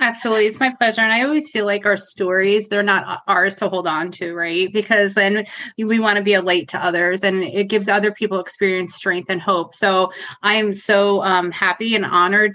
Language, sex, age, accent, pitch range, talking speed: English, female, 30-49, American, 190-220 Hz, 215 wpm